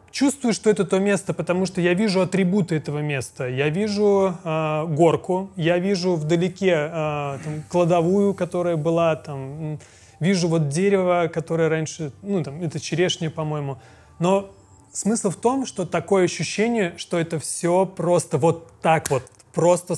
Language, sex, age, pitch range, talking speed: Russian, male, 30-49, 155-195 Hz, 140 wpm